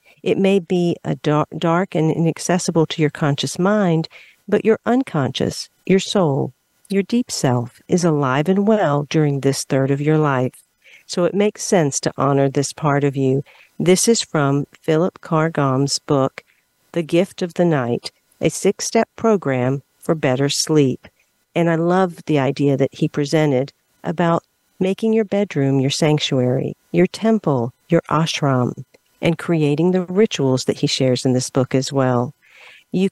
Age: 50-69